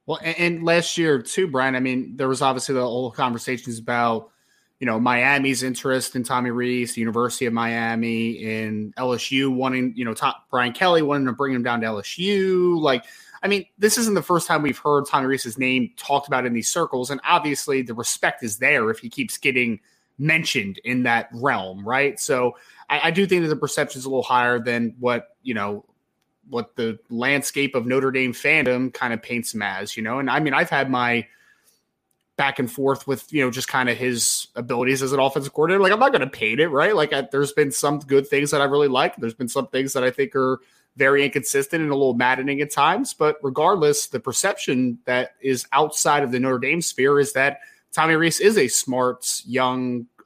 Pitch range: 125-145 Hz